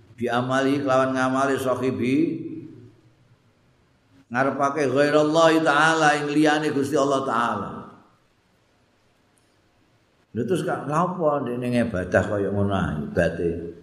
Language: Indonesian